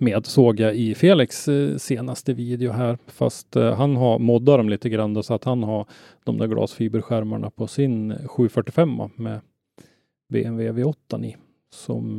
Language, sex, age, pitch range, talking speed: Swedish, male, 30-49, 110-130 Hz, 160 wpm